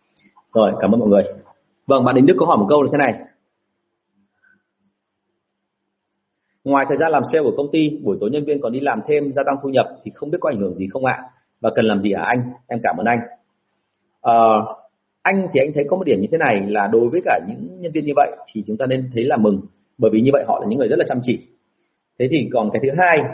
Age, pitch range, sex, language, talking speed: 30-49, 115-170 Hz, male, Vietnamese, 260 wpm